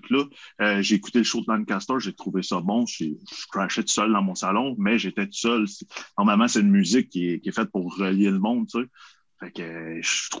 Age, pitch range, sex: 30-49, 100-140 Hz, male